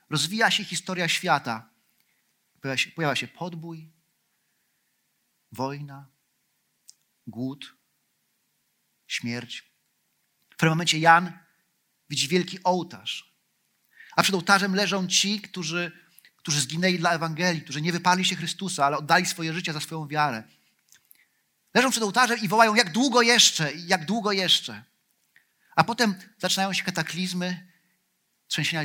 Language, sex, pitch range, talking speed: Polish, male, 160-205 Hz, 120 wpm